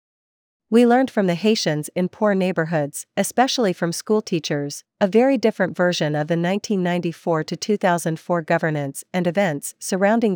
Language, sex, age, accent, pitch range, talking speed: English, female, 40-59, American, 165-200 Hz, 125 wpm